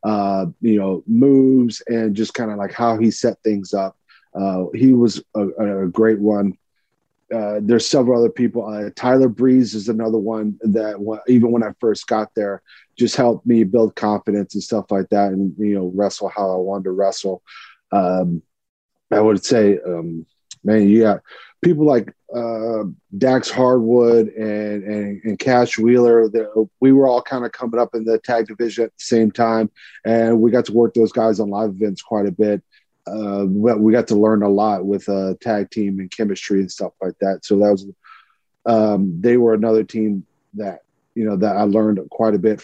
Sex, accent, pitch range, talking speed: male, American, 100-120 Hz, 195 wpm